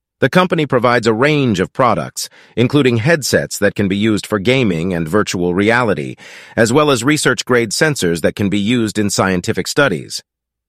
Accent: American